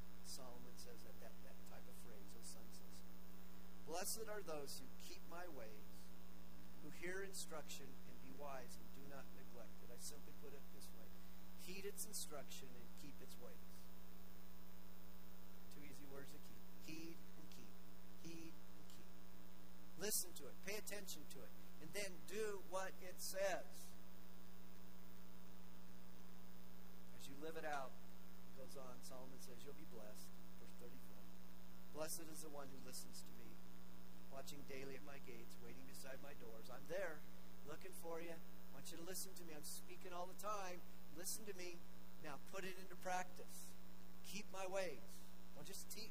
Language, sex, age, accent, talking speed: English, male, 50-69, American, 165 wpm